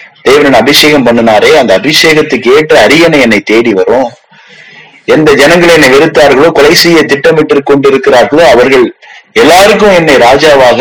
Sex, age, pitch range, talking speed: male, 30-49, 140-210 Hz, 115 wpm